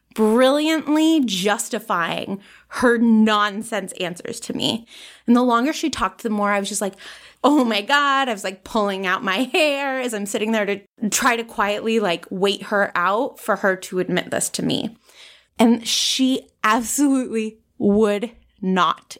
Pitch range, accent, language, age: 205-280 Hz, American, English, 20-39